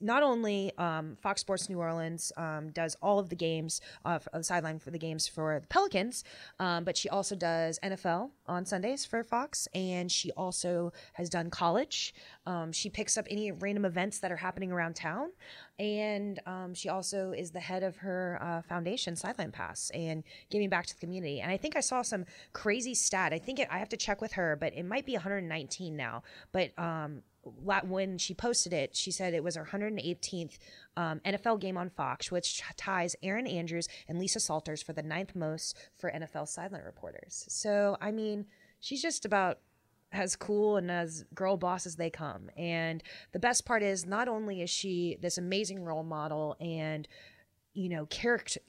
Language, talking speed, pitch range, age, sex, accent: English, 190 wpm, 165-205 Hz, 20-39, female, American